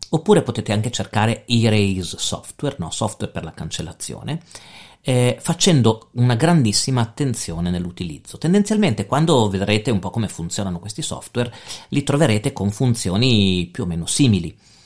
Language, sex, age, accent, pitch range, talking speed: Italian, male, 40-59, native, 95-125 Hz, 135 wpm